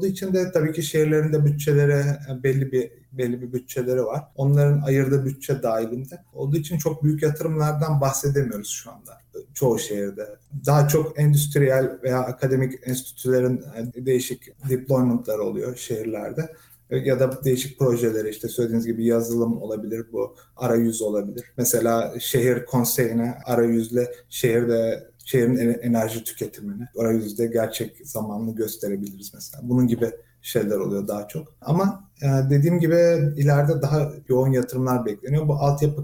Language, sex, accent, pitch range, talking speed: Turkish, male, native, 120-145 Hz, 130 wpm